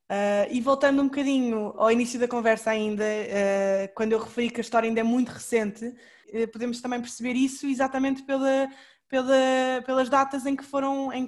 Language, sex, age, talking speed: Portuguese, female, 20-39, 155 wpm